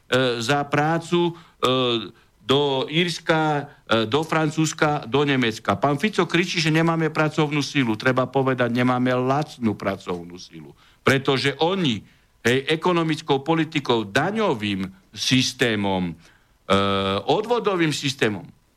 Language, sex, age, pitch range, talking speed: Slovak, male, 60-79, 135-200 Hz, 110 wpm